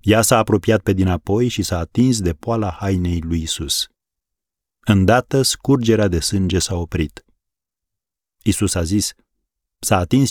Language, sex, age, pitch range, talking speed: Romanian, male, 30-49, 85-115 Hz, 140 wpm